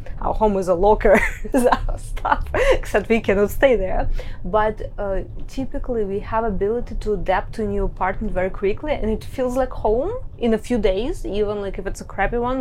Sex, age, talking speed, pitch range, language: female, 20-39, 200 wpm, 195-250 Hz, English